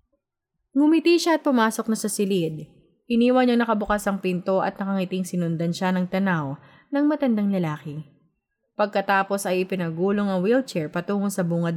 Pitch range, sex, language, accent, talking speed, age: 170-215 Hz, female, Filipino, native, 150 wpm, 20-39